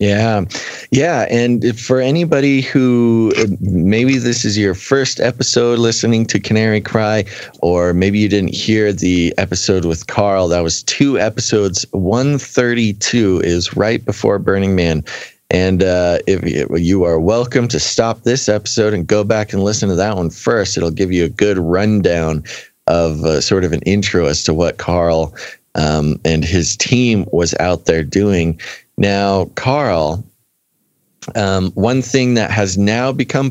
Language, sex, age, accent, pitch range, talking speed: English, male, 30-49, American, 90-120 Hz, 160 wpm